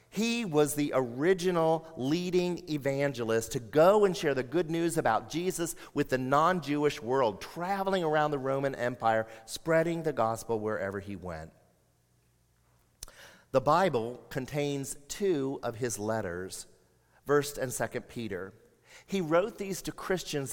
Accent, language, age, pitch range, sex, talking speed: American, English, 50-69, 115-165 Hz, male, 135 wpm